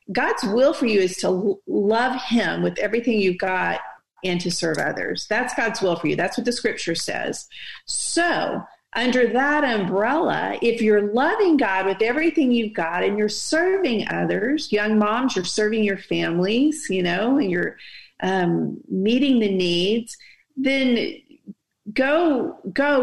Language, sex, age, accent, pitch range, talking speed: English, female, 40-59, American, 195-255 Hz, 155 wpm